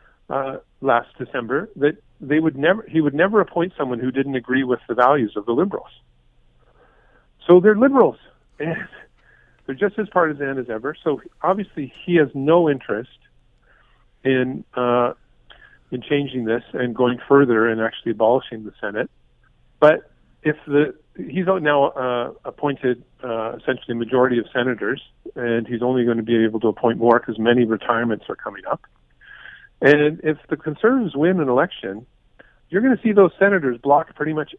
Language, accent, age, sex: English, American, 50-69, male